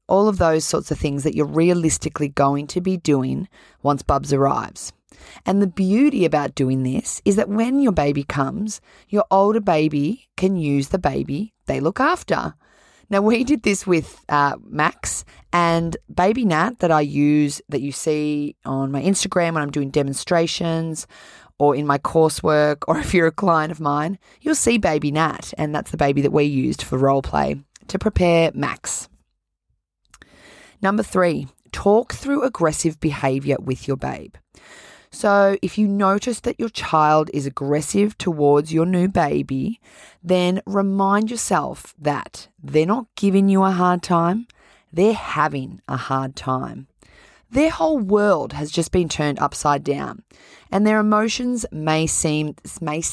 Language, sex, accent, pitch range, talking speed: English, female, Australian, 145-200 Hz, 160 wpm